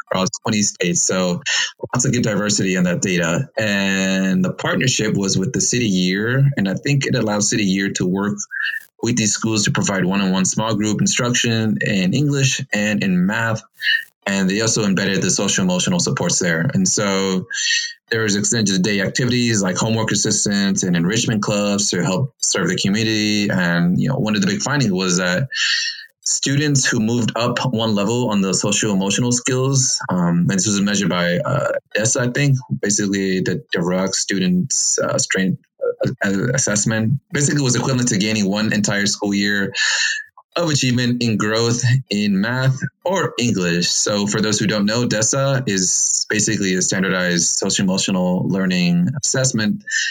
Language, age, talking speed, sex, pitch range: English, 30-49, 165 wpm, male, 100-135 Hz